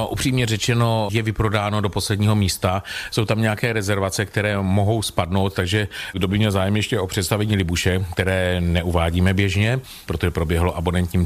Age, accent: 40-59, native